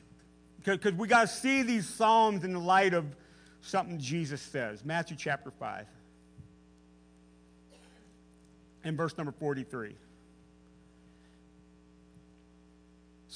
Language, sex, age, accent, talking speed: English, male, 40-59, American, 95 wpm